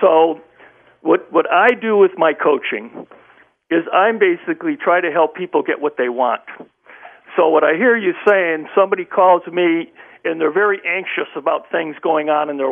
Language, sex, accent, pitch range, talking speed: English, male, American, 165-235 Hz, 185 wpm